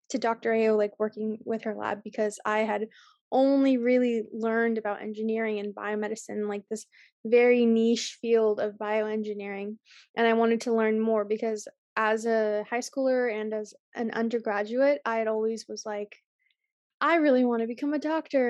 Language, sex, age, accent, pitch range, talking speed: English, female, 20-39, American, 215-235 Hz, 170 wpm